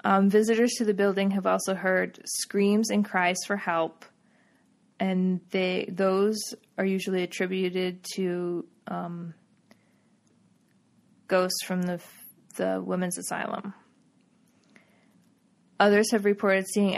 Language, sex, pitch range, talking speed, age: English, female, 185-215 Hz, 110 wpm, 20-39